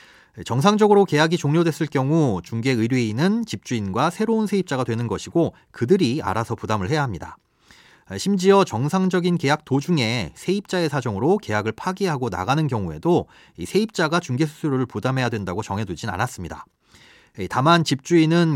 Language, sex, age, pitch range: Korean, male, 30-49, 115-175 Hz